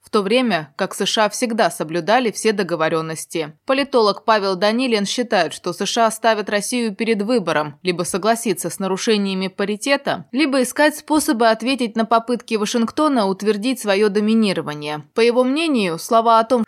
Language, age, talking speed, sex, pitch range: Russian, 20-39, 145 wpm, female, 200-255 Hz